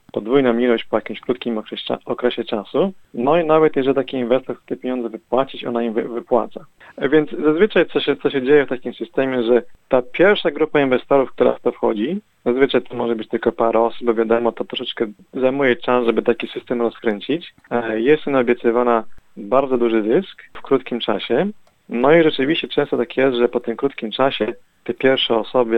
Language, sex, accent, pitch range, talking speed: Polish, male, native, 115-135 Hz, 180 wpm